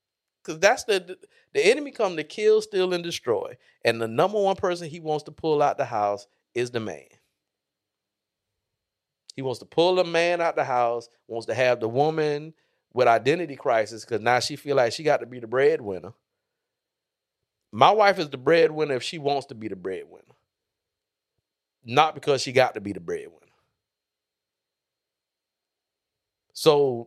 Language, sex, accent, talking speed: English, male, American, 165 wpm